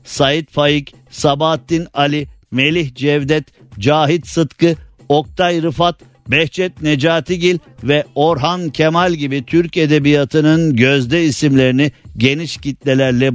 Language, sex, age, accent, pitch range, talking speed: Turkish, male, 50-69, native, 120-150 Hz, 100 wpm